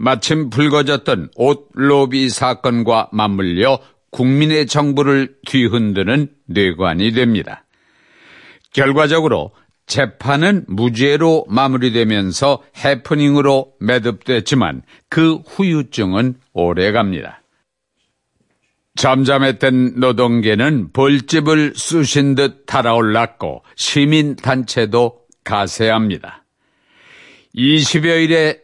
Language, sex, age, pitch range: Korean, male, 50-69, 120-150 Hz